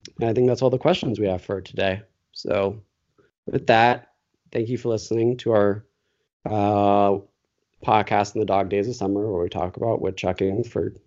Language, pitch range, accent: English, 105-130 Hz, American